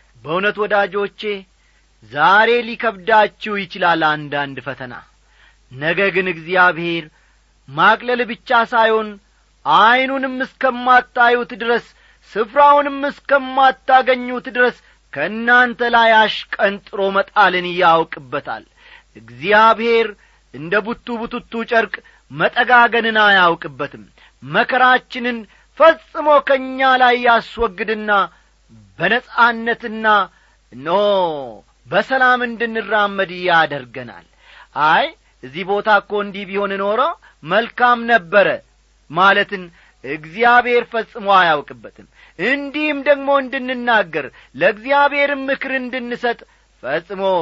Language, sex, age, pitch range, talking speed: Amharic, male, 40-59, 195-245 Hz, 75 wpm